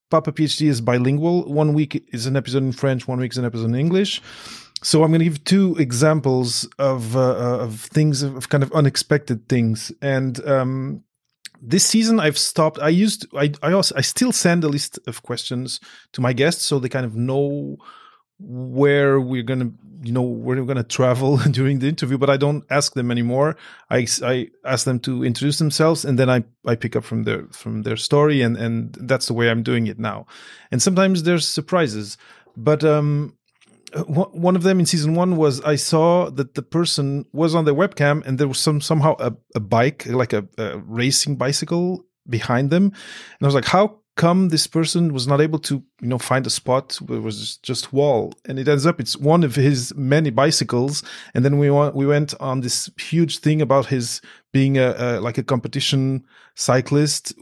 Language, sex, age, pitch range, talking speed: English, male, 30-49, 125-155 Hz, 205 wpm